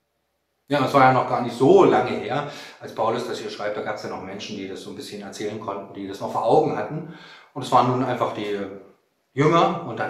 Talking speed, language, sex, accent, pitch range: 255 wpm, German, male, German, 120-150 Hz